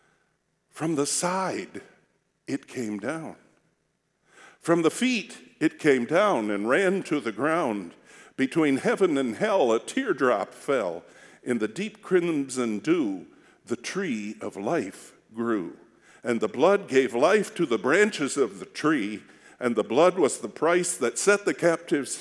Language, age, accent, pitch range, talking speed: English, 50-69, American, 135-210 Hz, 150 wpm